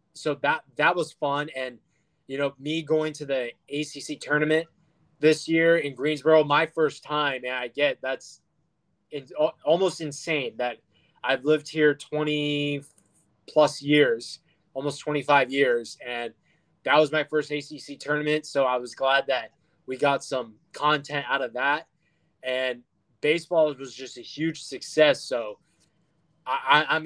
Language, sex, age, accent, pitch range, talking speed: English, male, 20-39, American, 140-160 Hz, 150 wpm